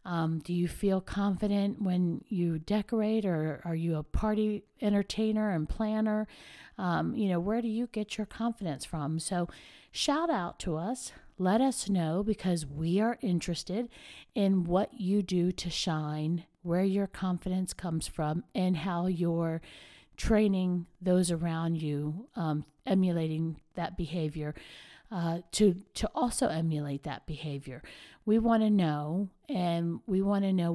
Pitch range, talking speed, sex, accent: 170-205 Hz, 150 wpm, female, American